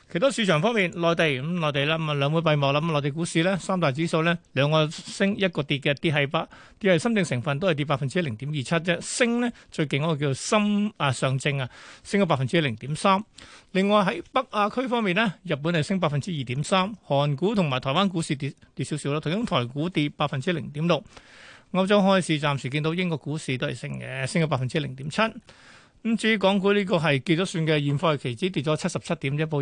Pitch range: 145-185 Hz